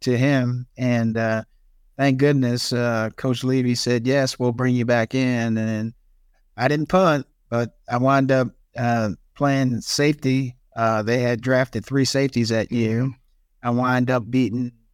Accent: American